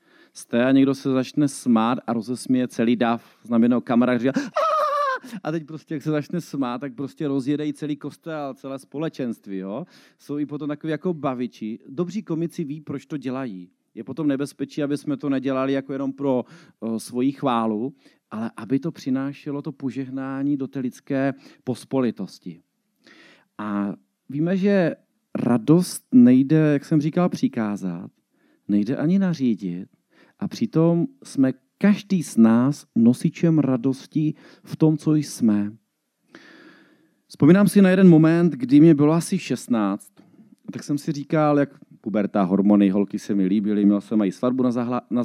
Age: 40-59